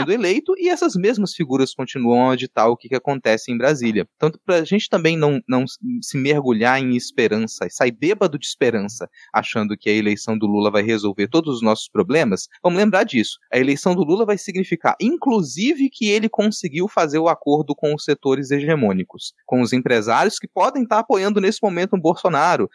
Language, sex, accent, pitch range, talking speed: Portuguese, male, Brazilian, 130-200 Hz, 190 wpm